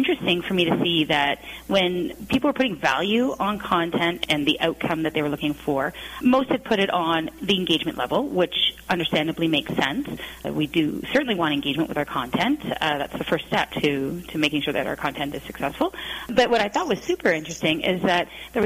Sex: female